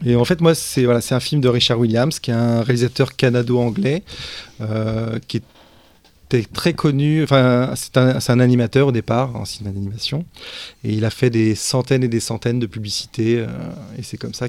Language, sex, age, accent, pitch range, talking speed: French, male, 20-39, French, 110-130 Hz, 205 wpm